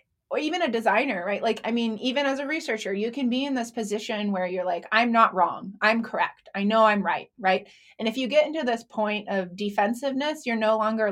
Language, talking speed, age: English, 230 wpm, 20-39